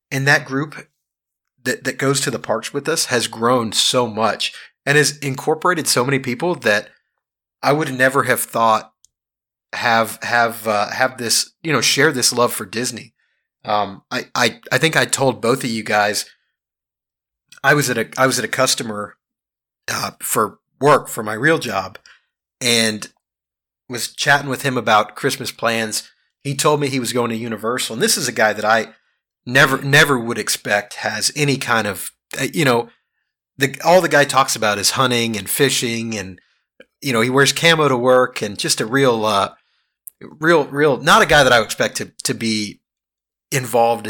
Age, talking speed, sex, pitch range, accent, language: 30-49, 185 wpm, male, 110-140 Hz, American, English